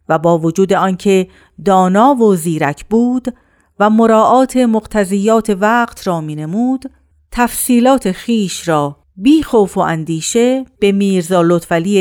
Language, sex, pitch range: Persian, female, 175-230 Hz